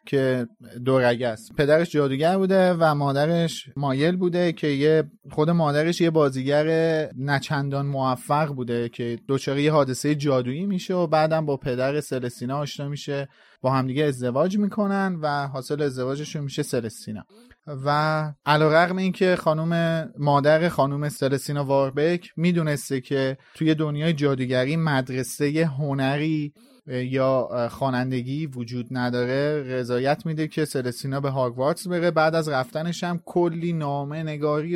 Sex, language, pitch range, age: male, Persian, 135-160 Hz, 30-49